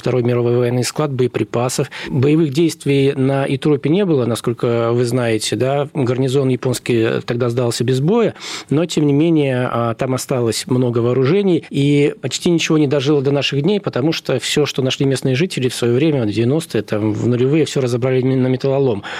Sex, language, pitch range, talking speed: male, Russian, 120-145 Hz, 170 wpm